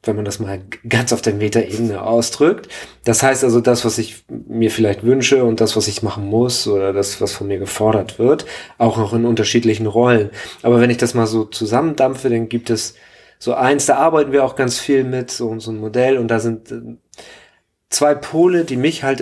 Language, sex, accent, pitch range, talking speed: German, male, German, 110-125 Hz, 210 wpm